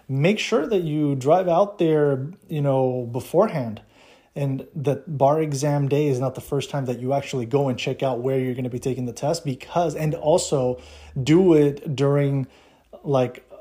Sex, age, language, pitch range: male, 30-49, English, 125-145 Hz